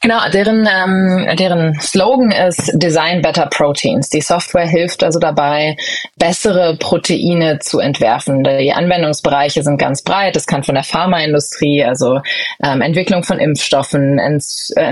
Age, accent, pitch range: 20-39, German, 145-175 Hz